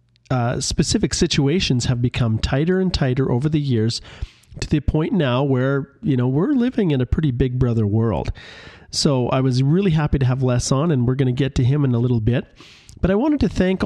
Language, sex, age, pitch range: English, male, 40-59, 120-145 Hz